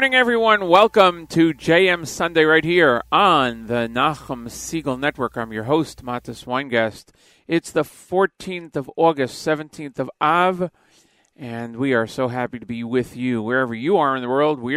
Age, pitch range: 40-59, 120-155 Hz